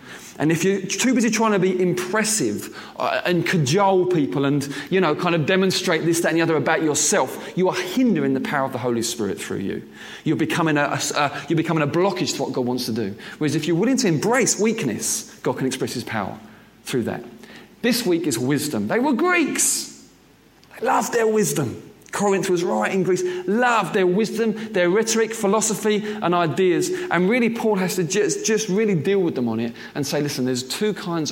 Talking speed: 200 wpm